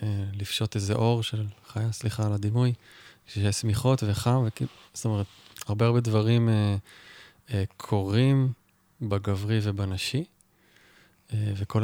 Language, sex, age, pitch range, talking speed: Hebrew, male, 20-39, 100-115 Hz, 120 wpm